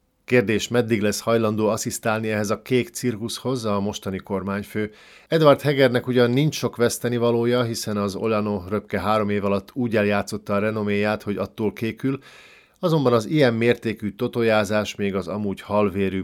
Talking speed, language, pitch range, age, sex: 150 wpm, Hungarian, 100-120 Hz, 50-69, male